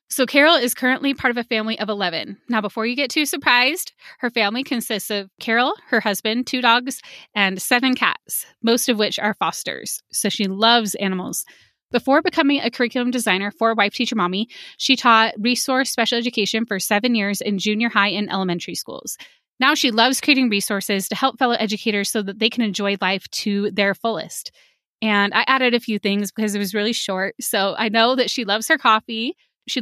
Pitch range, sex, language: 205-245 Hz, female, English